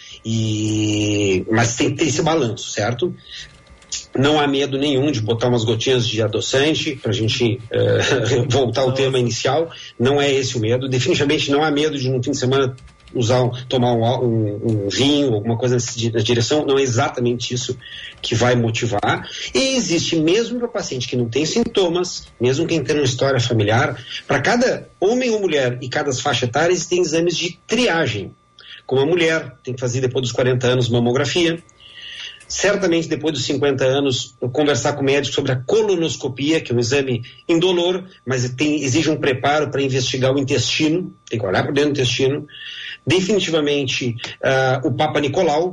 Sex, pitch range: male, 120-155 Hz